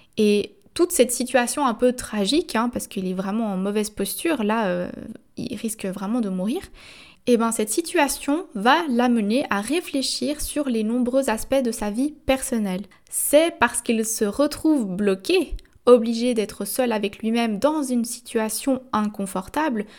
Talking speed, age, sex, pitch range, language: 160 wpm, 20-39, female, 210-265 Hz, French